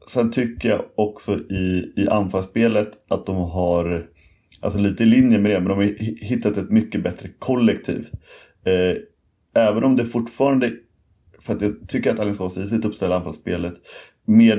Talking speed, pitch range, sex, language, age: 165 wpm, 90-110 Hz, male, English, 30-49